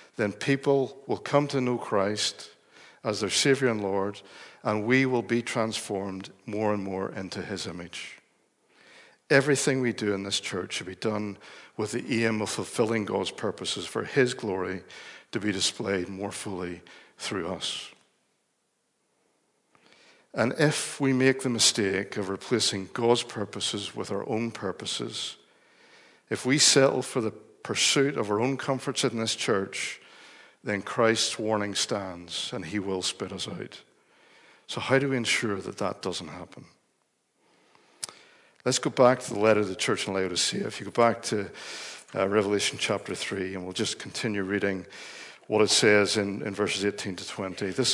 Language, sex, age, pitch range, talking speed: English, male, 60-79, 100-125 Hz, 165 wpm